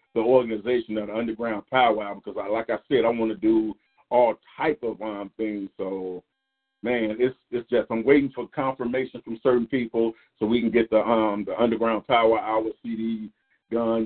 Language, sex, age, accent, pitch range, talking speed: English, male, 40-59, American, 105-120 Hz, 190 wpm